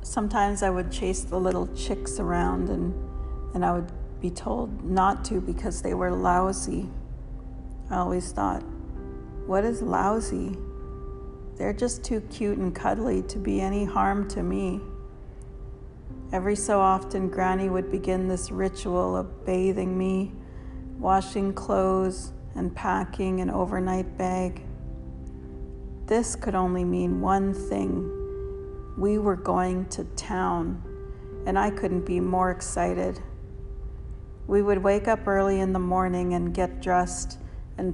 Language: Kannada